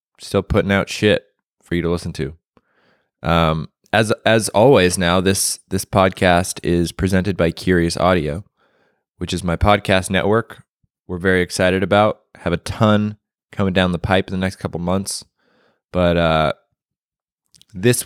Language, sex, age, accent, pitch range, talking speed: English, male, 20-39, American, 85-100 Hz, 155 wpm